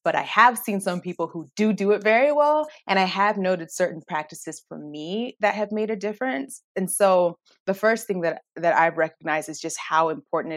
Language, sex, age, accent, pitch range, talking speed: English, female, 30-49, American, 160-215 Hz, 215 wpm